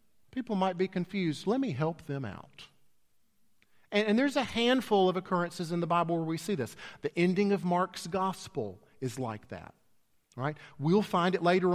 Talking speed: 185 wpm